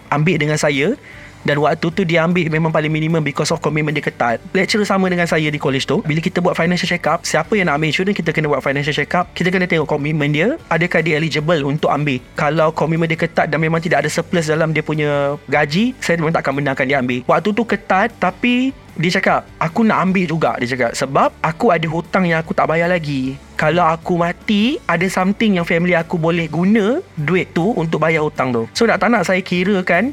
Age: 20-39